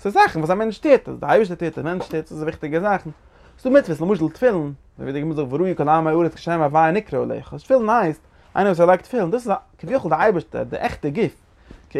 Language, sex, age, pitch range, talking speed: English, male, 20-39, 140-185 Hz, 205 wpm